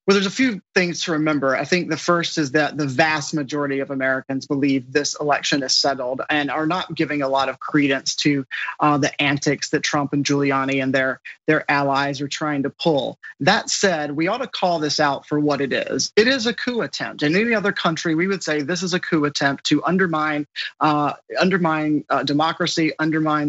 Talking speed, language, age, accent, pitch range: 205 wpm, English, 30-49, American, 145-165 Hz